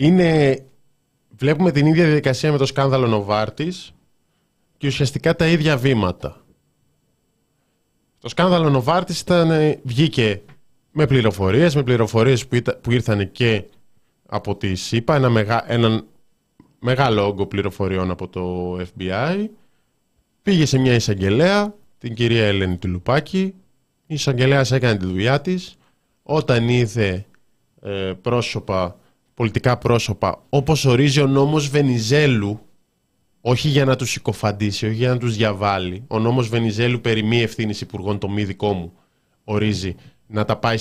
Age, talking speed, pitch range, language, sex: 20-39, 130 wpm, 105-150 Hz, Greek, male